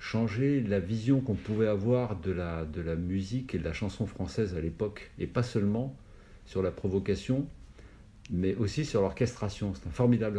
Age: 50-69